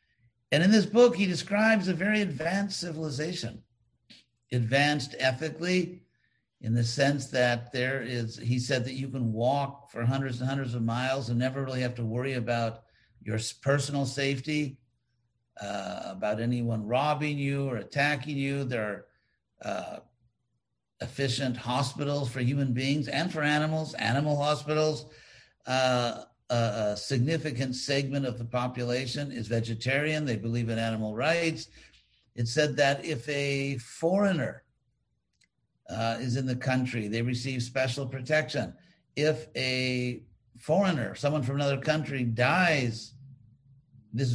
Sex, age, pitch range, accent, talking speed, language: male, 60-79, 120-145 Hz, American, 135 wpm, English